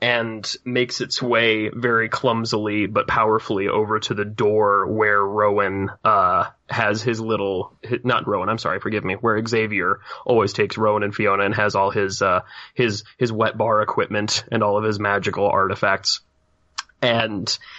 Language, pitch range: English, 105-120 Hz